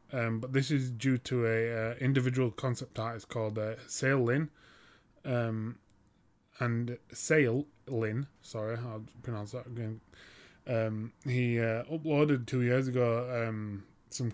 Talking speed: 140 wpm